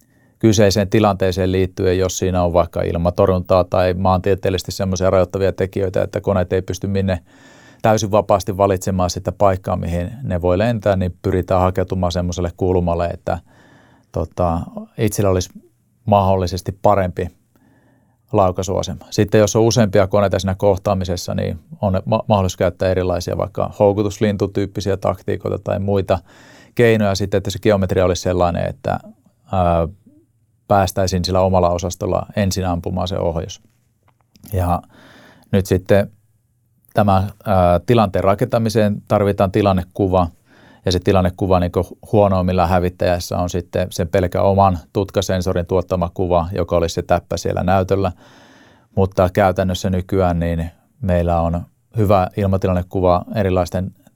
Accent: native